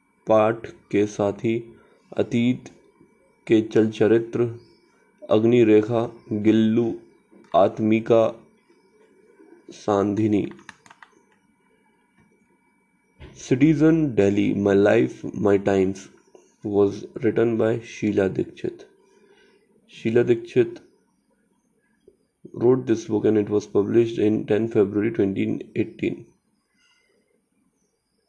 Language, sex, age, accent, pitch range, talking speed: English, male, 20-39, Indian, 105-120 Hz, 75 wpm